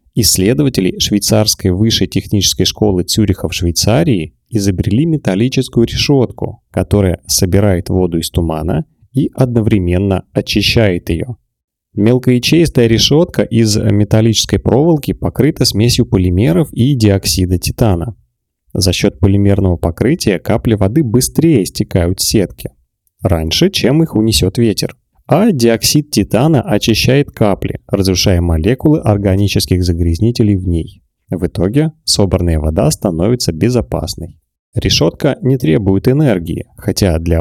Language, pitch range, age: Russian, 90-120 Hz, 30-49